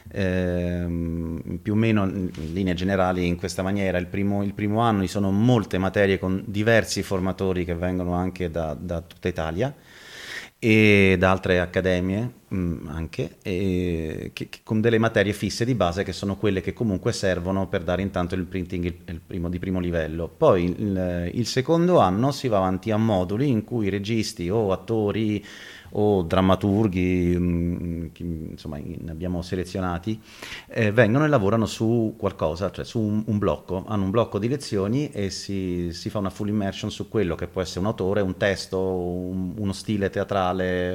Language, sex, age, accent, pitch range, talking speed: Italian, male, 30-49, native, 90-110 Hz, 170 wpm